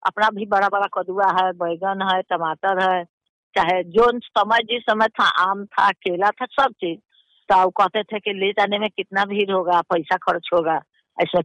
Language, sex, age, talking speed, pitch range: Hindi, female, 50-69, 190 wpm, 185-215 Hz